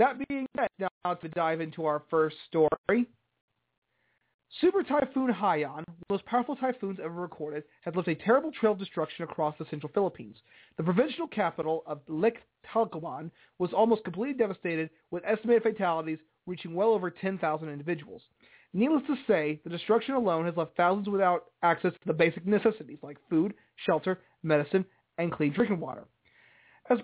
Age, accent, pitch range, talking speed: 30-49, American, 160-225 Hz, 165 wpm